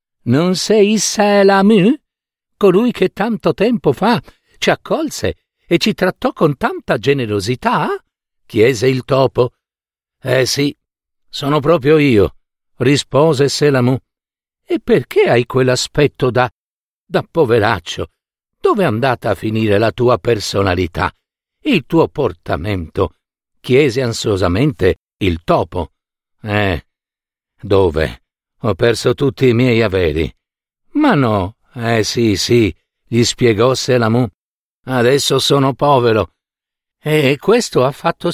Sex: male